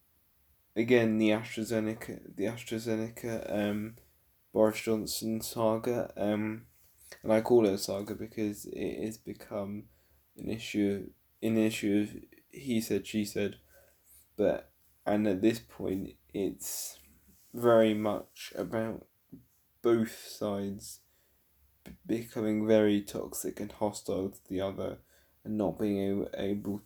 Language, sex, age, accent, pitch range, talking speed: English, male, 10-29, British, 95-110 Hz, 115 wpm